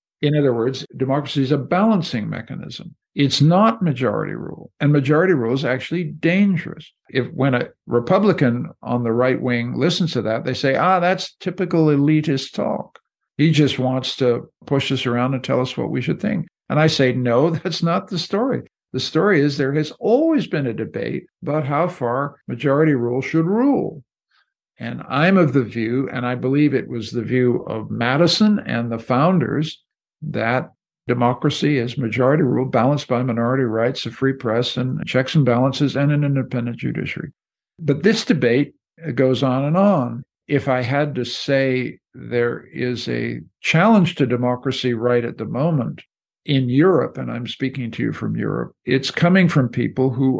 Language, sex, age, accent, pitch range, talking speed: English, male, 60-79, American, 125-160 Hz, 175 wpm